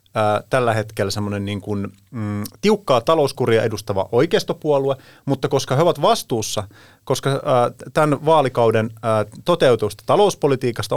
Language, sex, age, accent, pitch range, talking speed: Finnish, male, 30-49, native, 115-155 Hz, 115 wpm